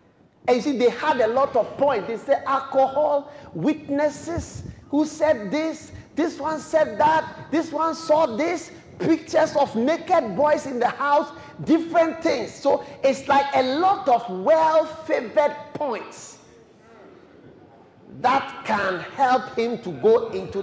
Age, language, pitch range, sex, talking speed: 50-69, English, 200-310 Hz, male, 145 wpm